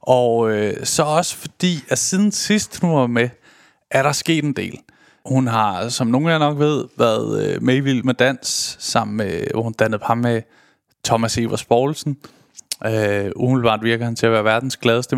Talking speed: 190 wpm